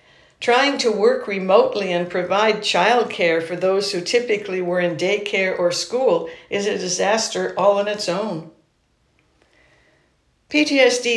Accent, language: American, English